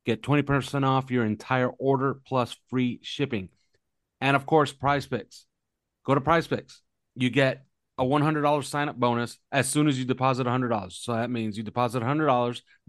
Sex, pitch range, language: male, 115-135 Hz, English